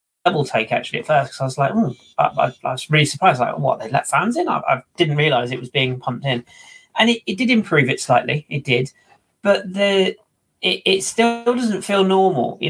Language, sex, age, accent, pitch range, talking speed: English, male, 30-49, British, 130-180 Hz, 235 wpm